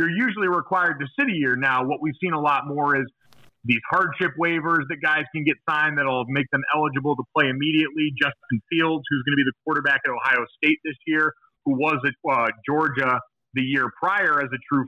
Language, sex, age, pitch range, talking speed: English, male, 30-49, 135-160 Hz, 220 wpm